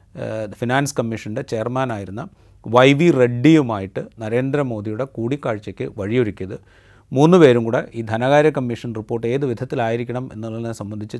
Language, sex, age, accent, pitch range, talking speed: Malayalam, male, 30-49, native, 110-135 Hz, 100 wpm